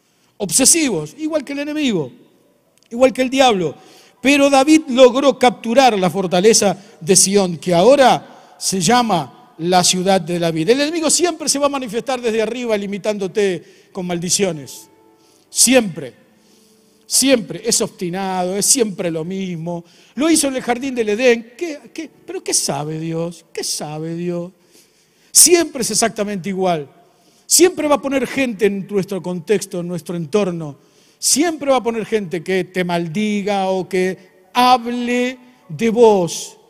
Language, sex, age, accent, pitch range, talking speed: Spanish, male, 50-69, Argentinian, 185-265 Hz, 145 wpm